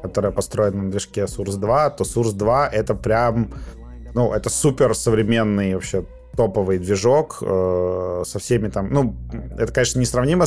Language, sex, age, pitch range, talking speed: Russian, male, 30-49, 95-125 Hz, 155 wpm